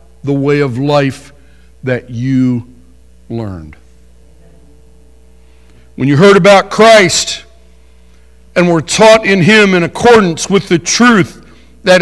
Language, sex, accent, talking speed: English, male, American, 115 wpm